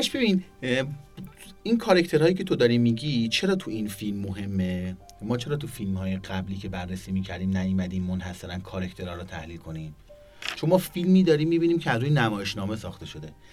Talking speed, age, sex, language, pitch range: 165 wpm, 30-49, male, Persian, 100-145 Hz